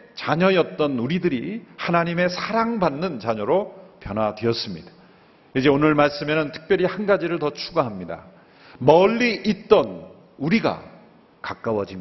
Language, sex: Korean, male